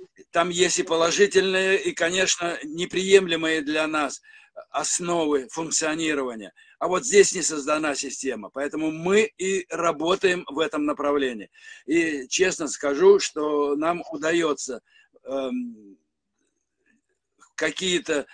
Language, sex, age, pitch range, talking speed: Russian, male, 60-79, 150-200 Hz, 100 wpm